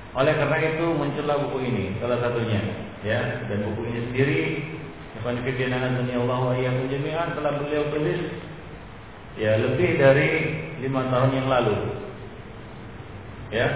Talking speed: 130 wpm